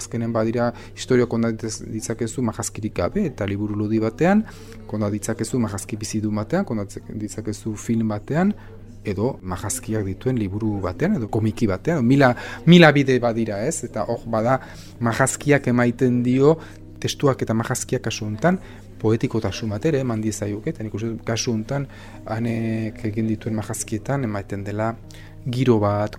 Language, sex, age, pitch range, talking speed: French, male, 30-49, 105-120 Hz, 135 wpm